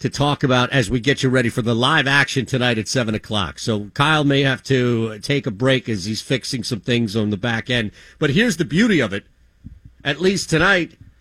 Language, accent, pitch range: English, American, 125-185 Hz